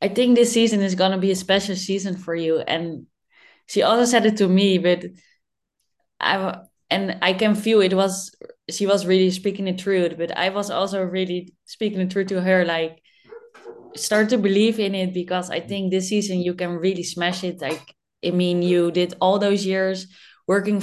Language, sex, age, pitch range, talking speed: English, female, 20-39, 160-195 Hz, 200 wpm